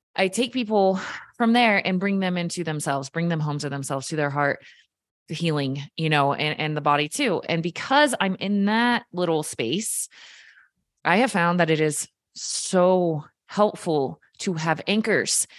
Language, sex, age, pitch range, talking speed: English, female, 20-39, 160-215 Hz, 175 wpm